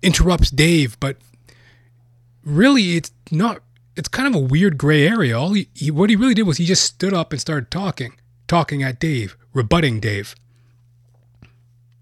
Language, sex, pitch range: English, male, 120-140 Hz